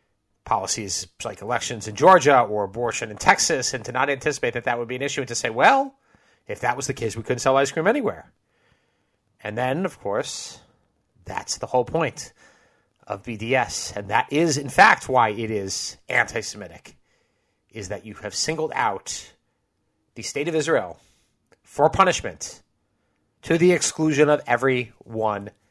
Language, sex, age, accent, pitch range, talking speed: English, male, 30-49, American, 105-145 Hz, 165 wpm